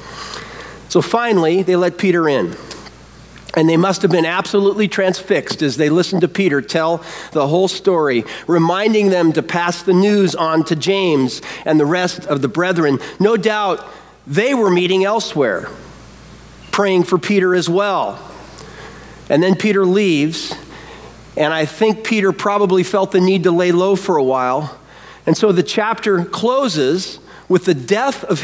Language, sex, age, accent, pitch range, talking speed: English, male, 40-59, American, 170-215 Hz, 160 wpm